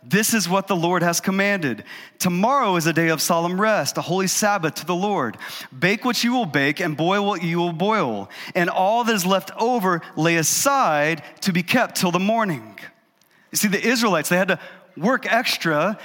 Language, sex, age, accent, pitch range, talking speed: English, male, 30-49, American, 185-225 Hz, 200 wpm